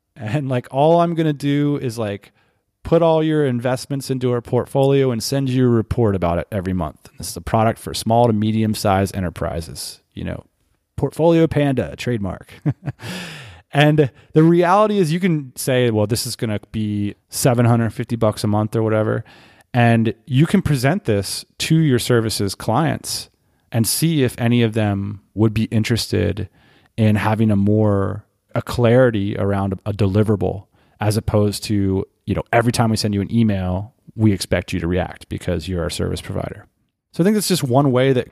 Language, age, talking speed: English, 30-49, 185 wpm